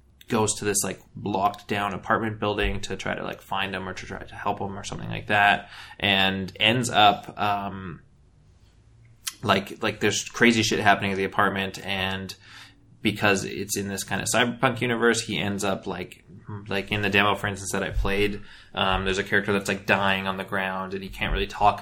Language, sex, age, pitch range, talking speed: English, male, 20-39, 95-105 Hz, 205 wpm